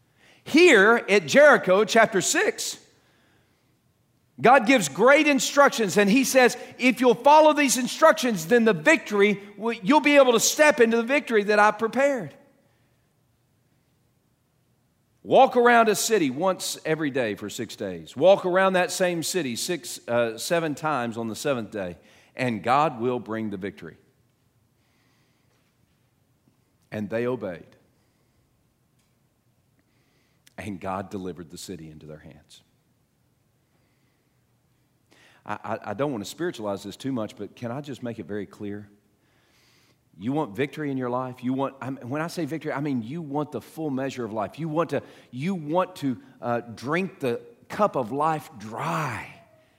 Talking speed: 150 wpm